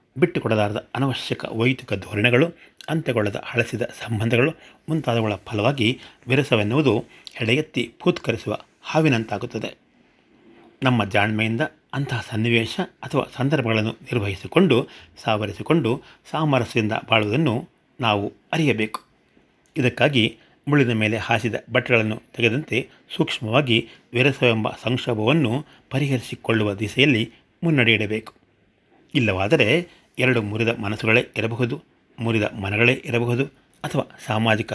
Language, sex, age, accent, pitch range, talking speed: Kannada, male, 30-49, native, 110-135 Hz, 80 wpm